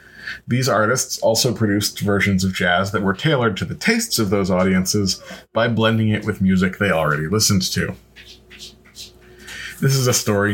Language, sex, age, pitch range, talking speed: English, male, 30-49, 95-115 Hz, 165 wpm